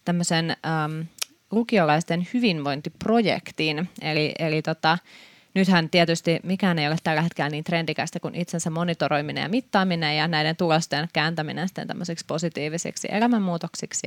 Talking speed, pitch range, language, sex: 115 wpm, 155-185 Hz, Finnish, female